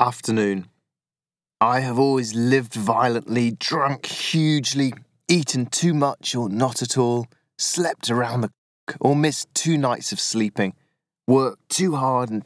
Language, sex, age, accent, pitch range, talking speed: English, male, 30-49, British, 105-130 Hz, 140 wpm